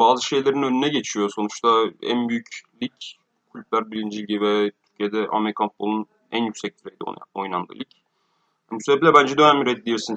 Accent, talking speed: native, 155 wpm